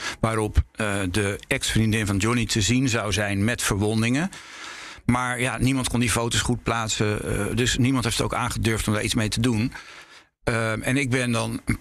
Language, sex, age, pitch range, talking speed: Dutch, male, 50-69, 110-130 Hz, 200 wpm